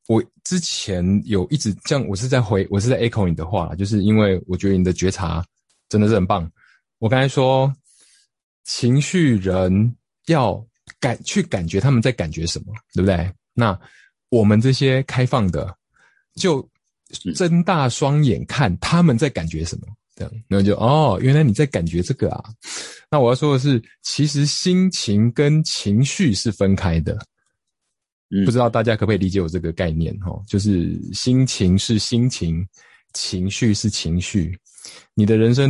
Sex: male